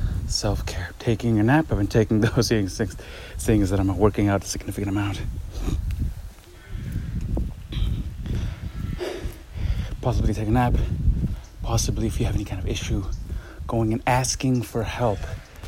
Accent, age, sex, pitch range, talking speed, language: American, 30-49, male, 95-115 Hz, 135 wpm, English